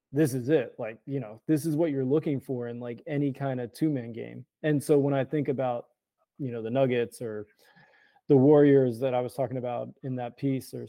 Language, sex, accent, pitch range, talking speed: French, male, American, 125-150 Hz, 230 wpm